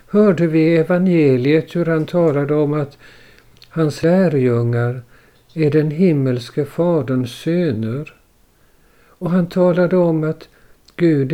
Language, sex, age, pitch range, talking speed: Swedish, male, 60-79, 130-170 Hz, 110 wpm